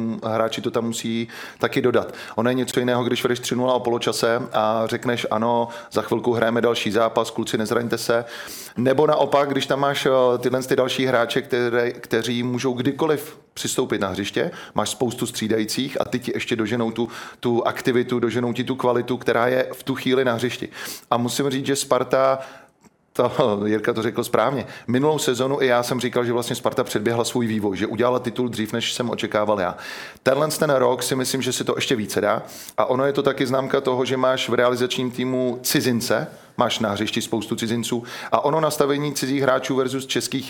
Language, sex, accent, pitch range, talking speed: Czech, male, native, 115-130 Hz, 195 wpm